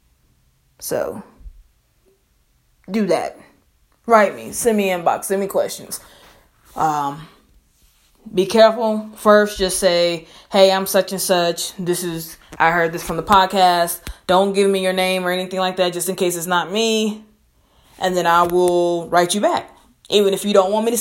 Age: 20-39